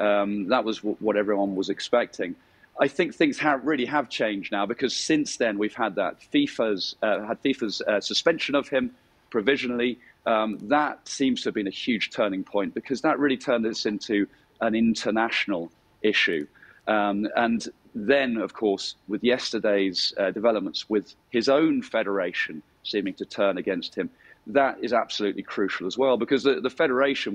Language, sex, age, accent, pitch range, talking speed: English, male, 40-59, British, 105-130 Hz, 170 wpm